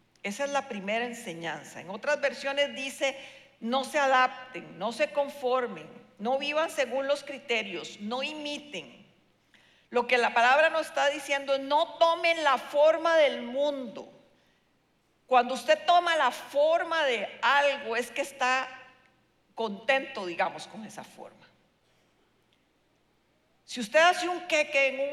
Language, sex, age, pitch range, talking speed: Spanish, female, 50-69, 225-290 Hz, 140 wpm